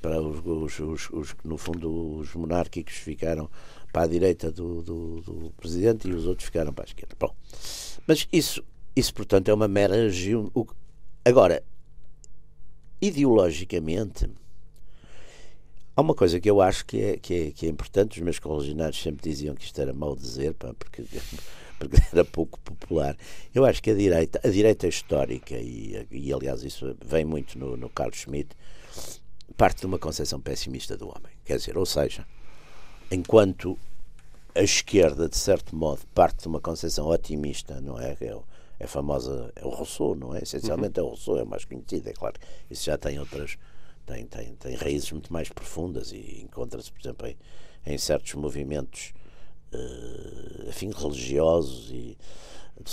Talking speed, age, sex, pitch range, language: 165 wpm, 60-79, male, 70-90 Hz, Portuguese